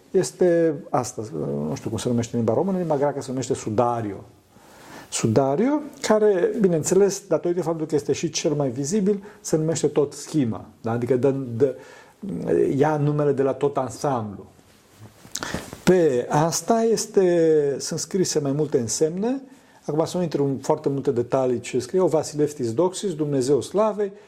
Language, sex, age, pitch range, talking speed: Romanian, male, 50-69, 130-180 Hz, 155 wpm